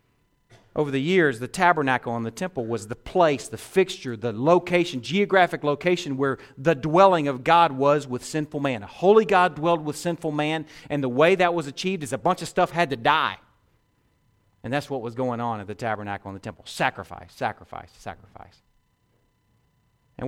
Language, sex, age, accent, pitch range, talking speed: English, male, 40-59, American, 115-170 Hz, 185 wpm